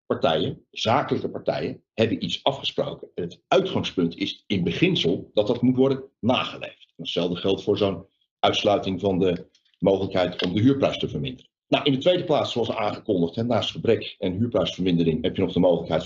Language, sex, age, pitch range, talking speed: Dutch, male, 50-69, 105-145 Hz, 165 wpm